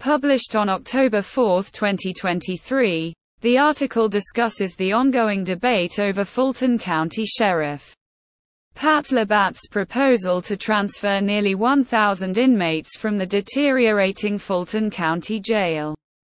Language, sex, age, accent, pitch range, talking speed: English, female, 20-39, British, 190-245 Hz, 105 wpm